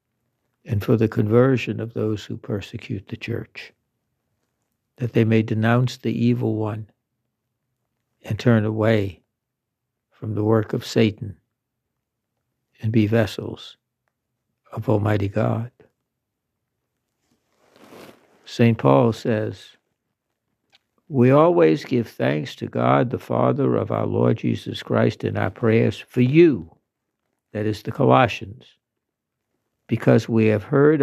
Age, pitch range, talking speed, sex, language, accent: 60-79, 105-120 Hz, 115 wpm, male, English, American